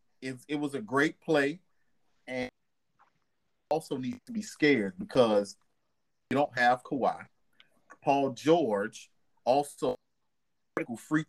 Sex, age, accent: male, 30-49, American